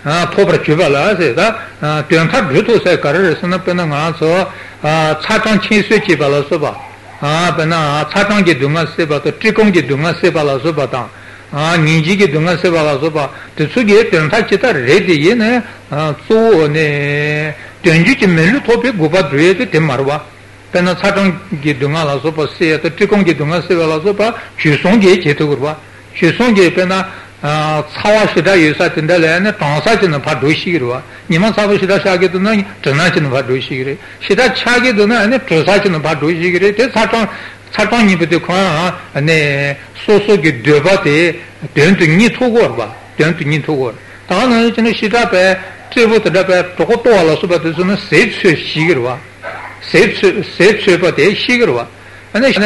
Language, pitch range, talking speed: Italian, 150-200 Hz, 80 wpm